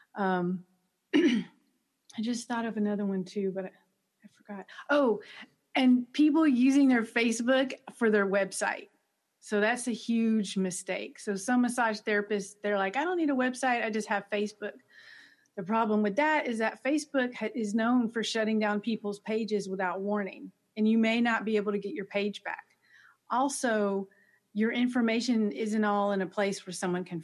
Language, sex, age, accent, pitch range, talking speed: English, female, 40-59, American, 195-245 Hz, 175 wpm